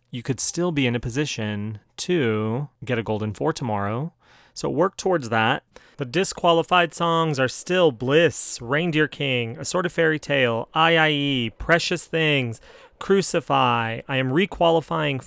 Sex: male